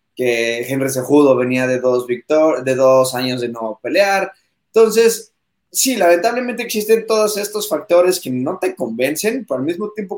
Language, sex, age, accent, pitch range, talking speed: Spanish, male, 20-39, Mexican, 130-170 Hz, 165 wpm